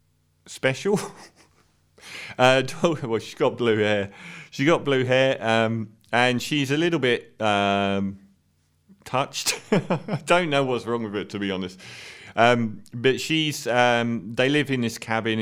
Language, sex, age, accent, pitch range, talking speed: English, male, 40-59, British, 100-130 Hz, 150 wpm